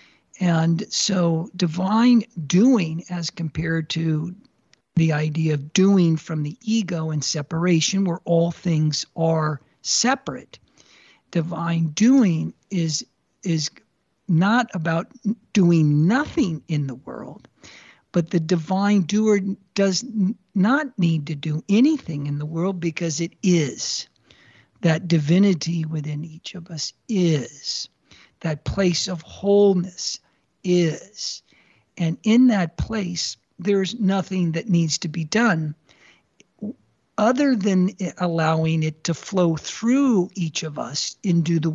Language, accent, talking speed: English, American, 120 wpm